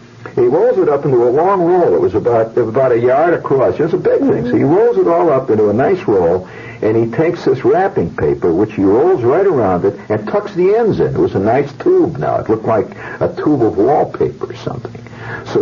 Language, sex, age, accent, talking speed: English, male, 60-79, American, 240 wpm